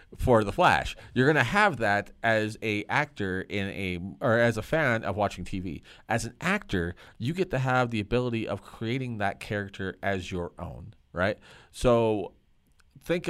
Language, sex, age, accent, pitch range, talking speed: English, male, 30-49, American, 100-135 Hz, 175 wpm